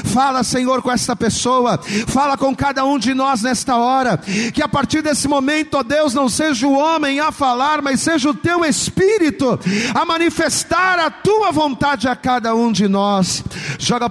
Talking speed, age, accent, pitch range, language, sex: 180 wpm, 40-59, Brazilian, 195-280 Hz, Portuguese, male